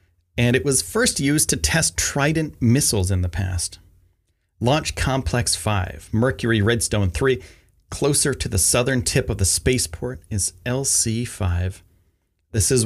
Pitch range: 90-125 Hz